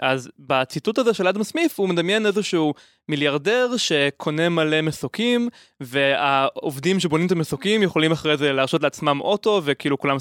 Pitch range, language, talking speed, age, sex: 140-190 Hz, Hebrew, 145 wpm, 20-39, male